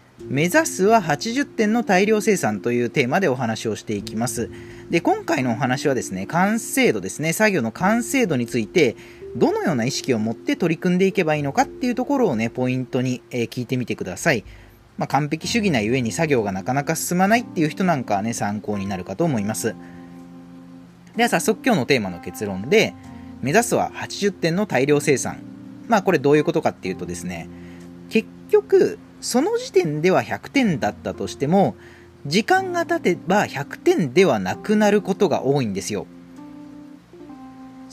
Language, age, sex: Japanese, 40-59, male